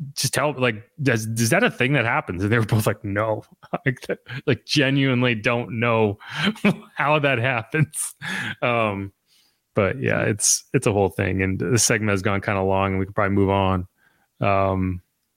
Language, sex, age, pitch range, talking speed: English, male, 20-39, 105-150 Hz, 185 wpm